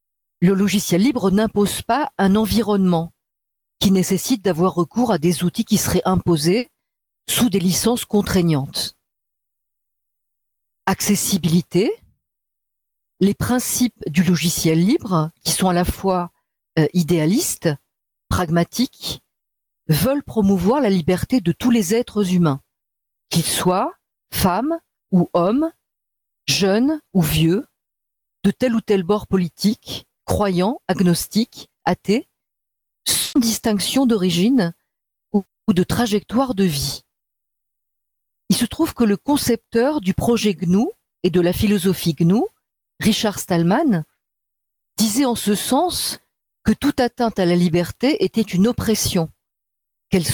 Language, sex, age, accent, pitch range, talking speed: French, female, 50-69, French, 170-225 Hz, 120 wpm